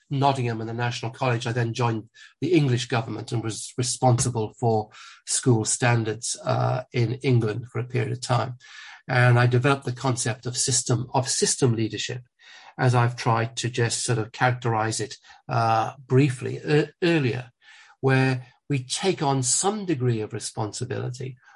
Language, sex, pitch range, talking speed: English, male, 120-135 Hz, 155 wpm